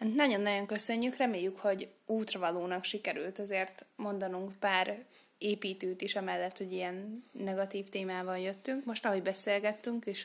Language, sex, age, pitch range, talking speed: Hungarian, female, 20-39, 190-230 Hz, 125 wpm